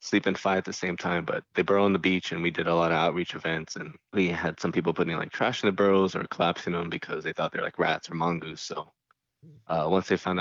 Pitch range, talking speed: 85-95 Hz, 285 wpm